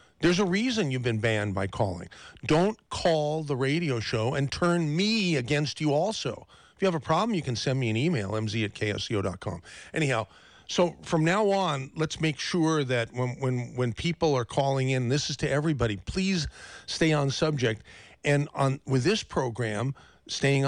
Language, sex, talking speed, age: English, male, 185 wpm, 50-69